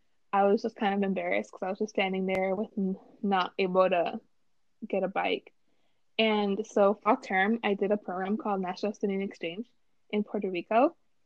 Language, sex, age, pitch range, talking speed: English, female, 20-39, 195-235 Hz, 180 wpm